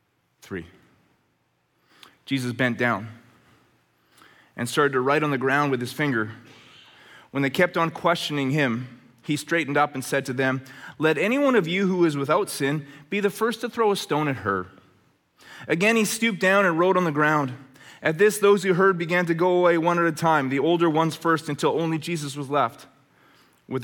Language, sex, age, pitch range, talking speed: English, male, 30-49, 120-170 Hz, 195 wpm